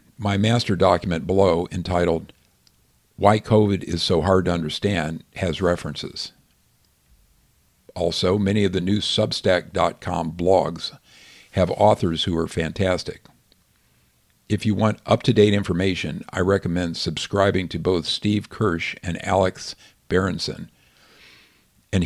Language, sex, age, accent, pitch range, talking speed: English, male, 50-69, American, 85-105 Hz, 115 wpm